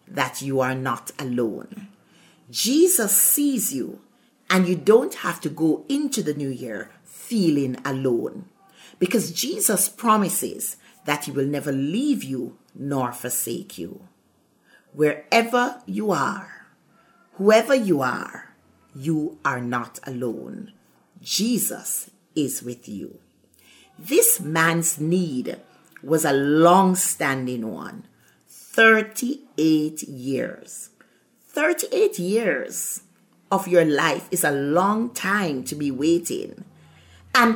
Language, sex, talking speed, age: English, female, 110 wpm, 50-69